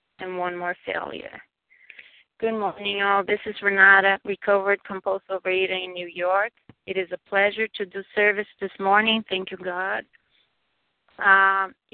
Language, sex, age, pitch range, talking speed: English, female, 30-49, 185-210 Hz, 145 wpm